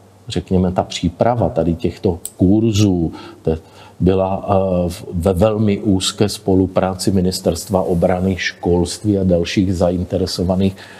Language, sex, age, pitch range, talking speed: Czech, male, 50-69, 90-100 Hz, 95 wpm